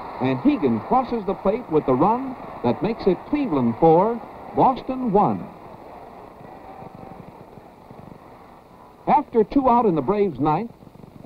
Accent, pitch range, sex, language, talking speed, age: American, 165-245 Hz, male, English, 115 wpm, 60-79